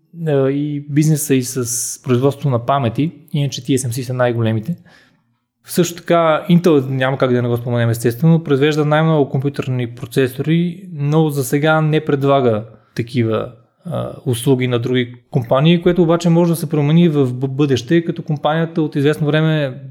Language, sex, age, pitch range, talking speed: Bulgarian, male, 20-39, 125-155 Hz, 150 wpm